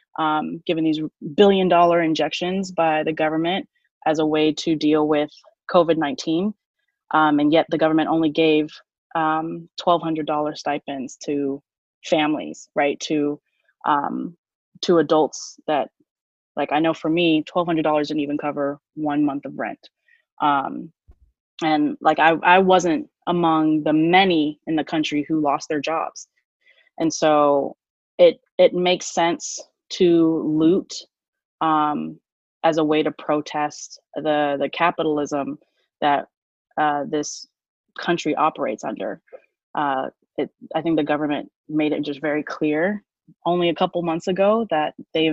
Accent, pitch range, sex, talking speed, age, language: American, 150-175 Hz, female, 140 wpm, 20-39, English